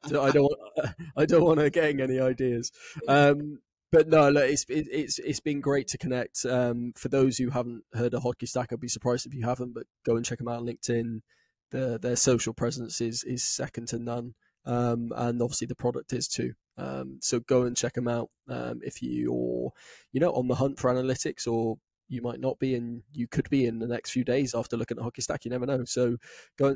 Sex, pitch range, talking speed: male, 120-130 Hz, 225 wpm